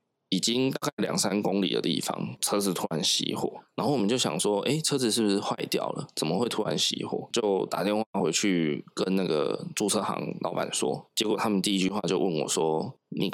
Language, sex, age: Chinese, male, 20-39